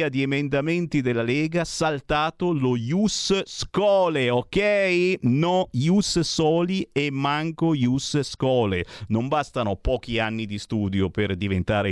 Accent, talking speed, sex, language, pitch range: native, 105 wpm, male, Italian, 110-180 Hz